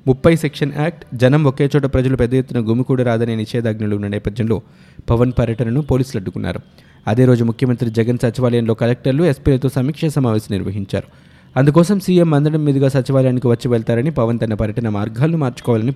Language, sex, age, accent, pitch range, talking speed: Telugu, male, 20-39, native, 115-140 Hz, 150 wpm